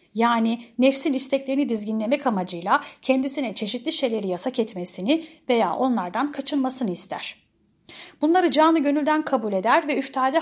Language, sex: Turkish, female